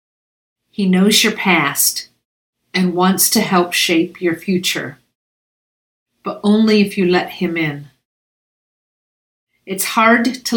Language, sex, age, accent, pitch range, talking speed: English, female, 50-69, American, 165-205 Hz, 120 wpm